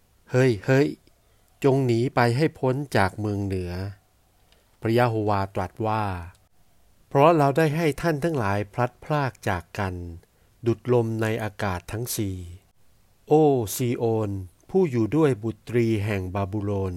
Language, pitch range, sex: Thai, 100-120 Hz, male